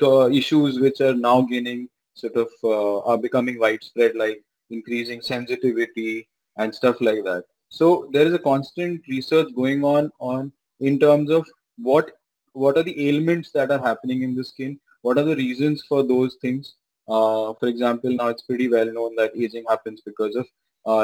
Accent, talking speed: Indian, 175 wpm